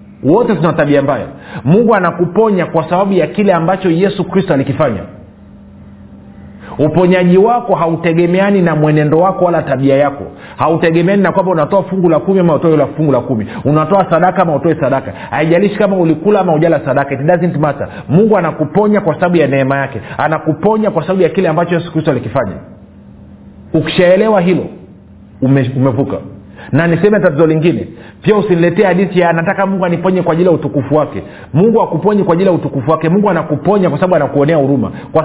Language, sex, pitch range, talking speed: Swahili, male, 130-180 Hz, 170 wpm